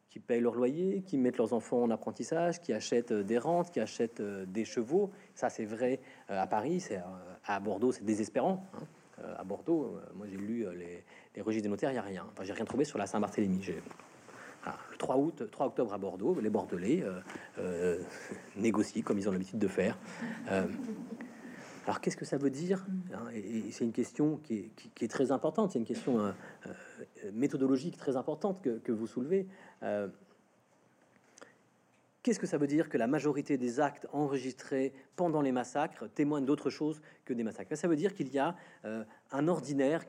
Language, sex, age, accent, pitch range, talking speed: French, male, 40-59, French, 115-175 Hz, 195 wpm